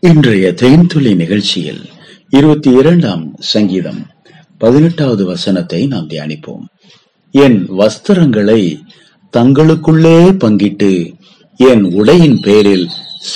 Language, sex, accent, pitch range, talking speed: Tamil, male, native, 110-180 Hz, 60 wpm